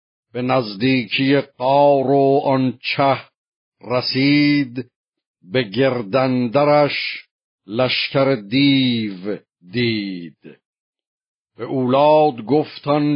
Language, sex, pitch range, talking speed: Persian, male, 125-145 Hz, 65 wpm